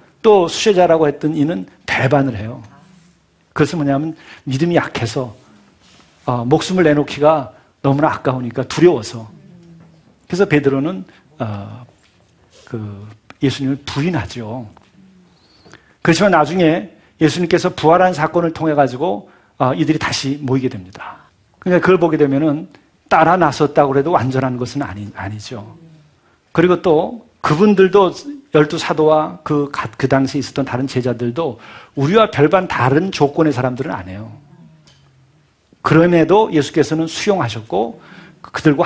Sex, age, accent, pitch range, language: male, 40-59, native, 130-170 Hz, Korean